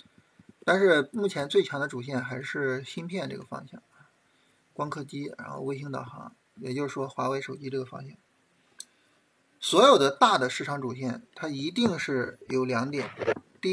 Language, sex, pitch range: Chinese, male, 125-155 Hz